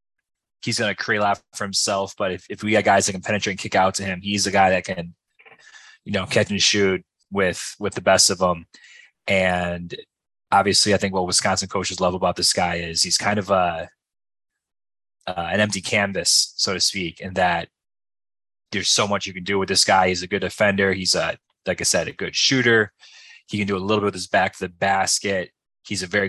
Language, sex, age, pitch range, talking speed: English, male, 20-39, 95-105 Hz, 225 wpm